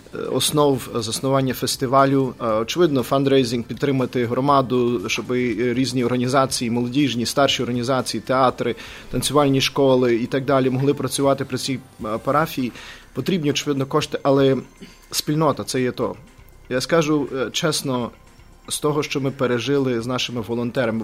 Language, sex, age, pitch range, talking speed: English, male, 30-49, 120-140 Hz, 125 wpm